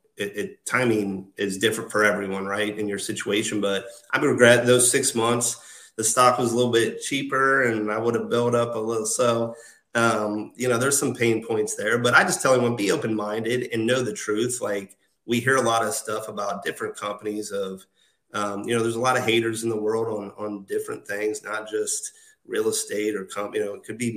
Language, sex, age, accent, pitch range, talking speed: English, male, 30-49, American, 105-125 Hz, 220 wpm